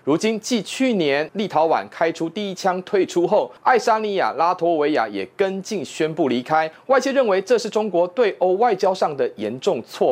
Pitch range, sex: 165-235 Hz, male